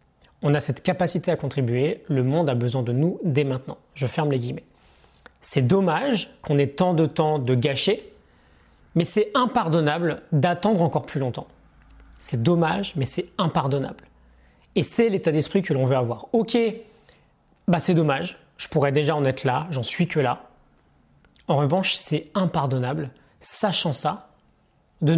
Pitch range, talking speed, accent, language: 130-175 Hz, 160 wpm, French, French